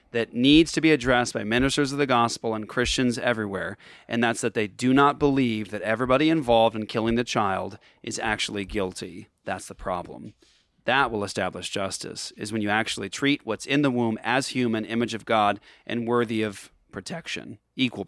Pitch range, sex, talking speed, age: 115-155 Hz, male, 185 wpm, 30-49